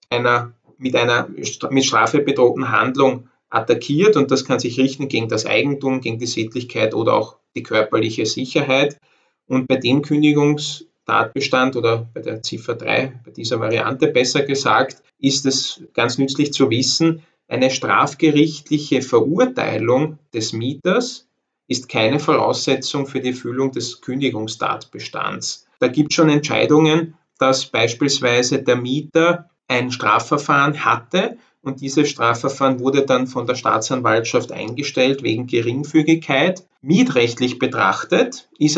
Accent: Austrian